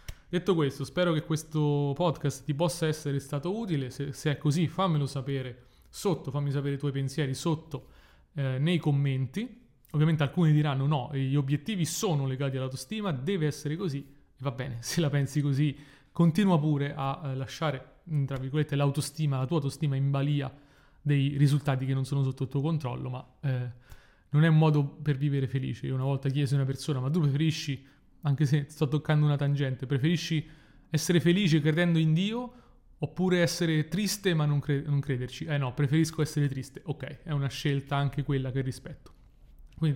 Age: 30-49